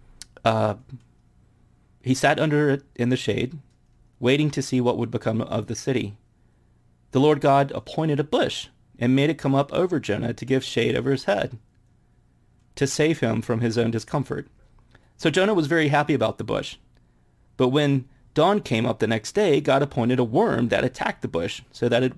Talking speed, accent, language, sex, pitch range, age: 190 wpm, American, English, male, 115-140 Hz, 30-49